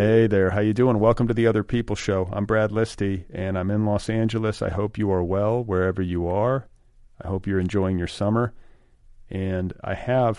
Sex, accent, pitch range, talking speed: male, American, 95-115 Hz, 210 wpm